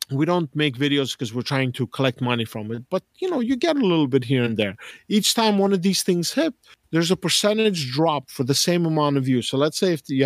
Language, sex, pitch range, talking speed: English, male, 125-170 Hz, 265 wpm